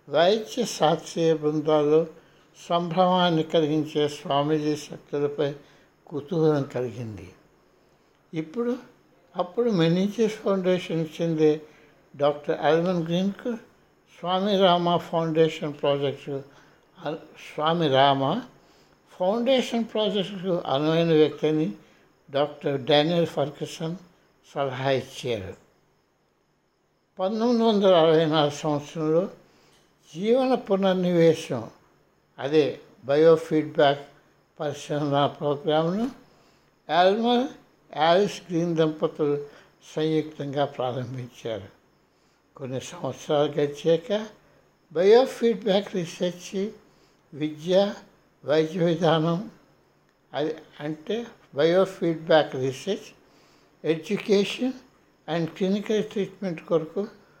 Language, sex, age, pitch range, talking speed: Telugu, male, 60-79, 150-190 Hz, 70 wpm